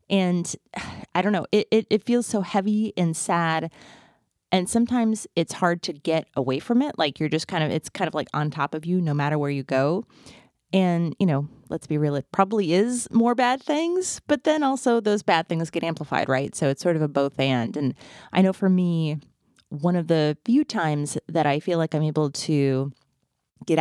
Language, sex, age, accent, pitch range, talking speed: English, female, 30-49, American, 140-185 Hz, 215 wpm